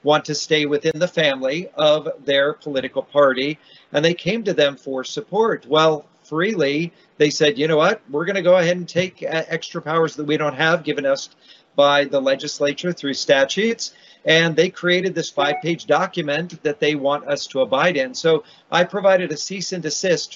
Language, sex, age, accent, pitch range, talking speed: English, male, 50-69, American, 145-175 Hz, 190 wpm